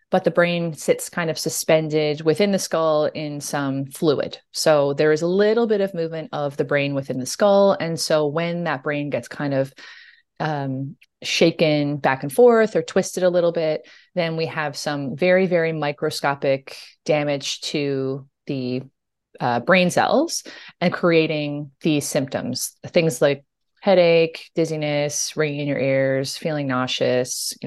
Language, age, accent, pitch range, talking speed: English, 20-39, American, 140-170 Hz, 160 wpm